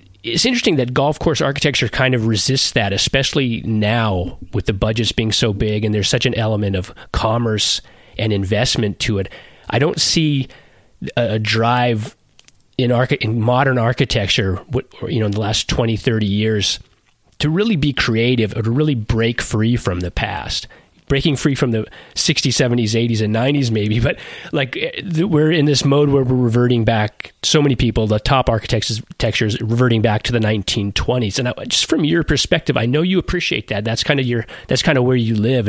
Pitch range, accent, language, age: 110-135 Hz, American, English, 30-49